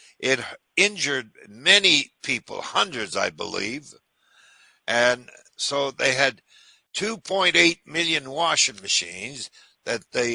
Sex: male